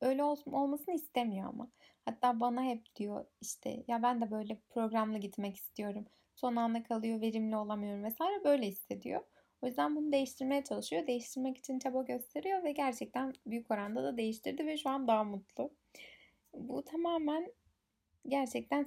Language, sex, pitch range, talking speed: Turkish, female, 220-270 Hz, 150 wpm